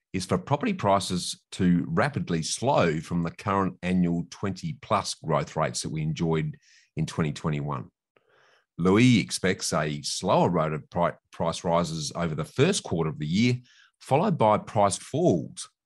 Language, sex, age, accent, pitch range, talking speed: English, male, 30-49, Australian, 85-100 Hz, 150 wpm